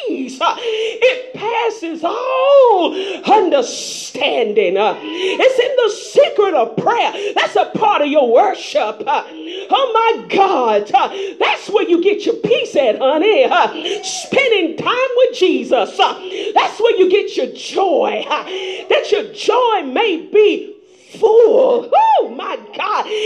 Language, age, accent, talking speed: English, 40-59, American, 120 wpm